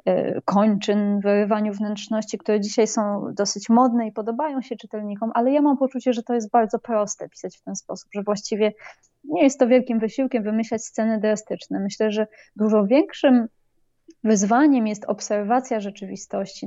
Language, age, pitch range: Polish, 20-39, 210-245 Hz